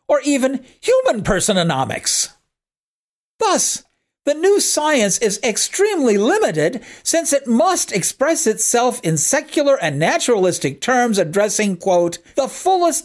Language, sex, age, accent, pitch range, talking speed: English, male, 50-69, American, 180-275 Hz, 115 wpm